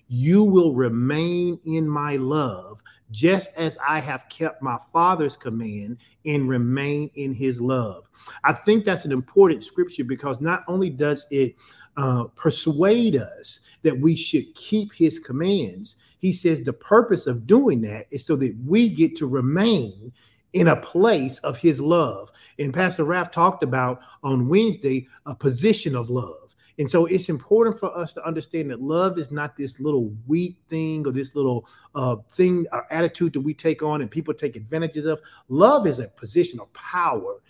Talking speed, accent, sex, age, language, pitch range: 175 wpm, American, male, 40-59, English, 130-175 Hz